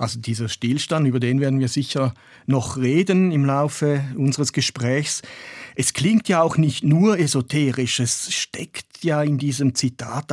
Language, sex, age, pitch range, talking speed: German, male, 50-69, 130-160 Hz, 155 wpm